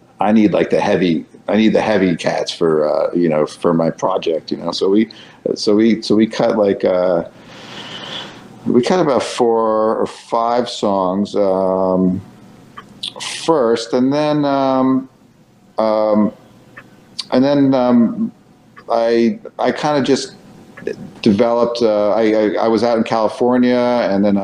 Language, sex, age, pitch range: English, male, 50-69, 95-120 Hz